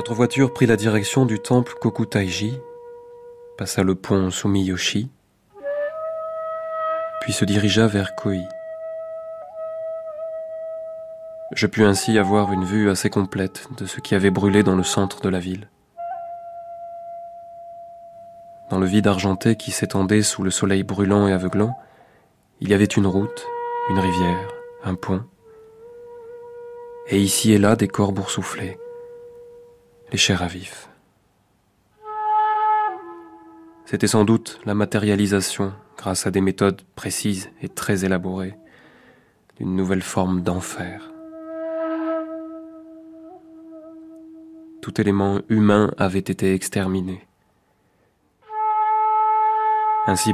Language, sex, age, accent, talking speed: French, male, 20-39, French, 110 wpm